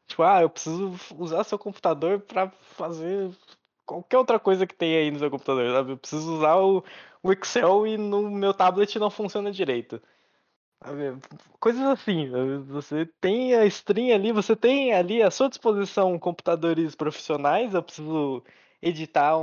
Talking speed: 160 wpm